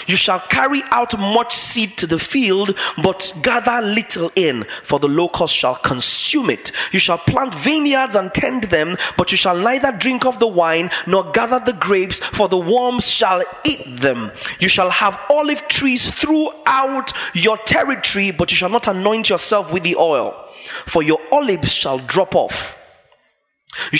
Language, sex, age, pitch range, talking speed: English, male, 30-49, 170-240 Hz, 170 wpm